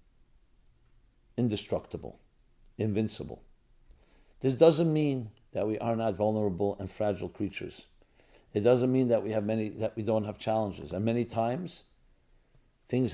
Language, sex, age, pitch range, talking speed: English, male, 50-69, 100-130 Hz, 130 wpm